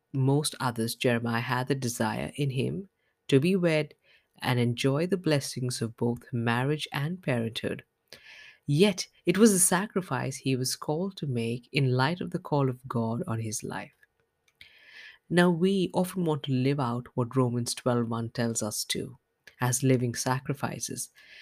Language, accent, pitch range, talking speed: English, Indian, 125-160 Hz, 160 wpm